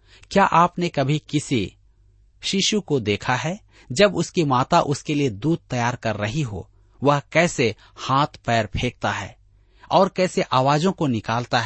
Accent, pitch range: native, 115-170 Hz